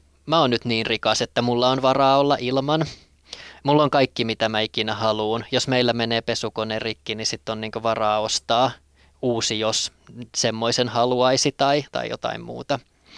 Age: 20-39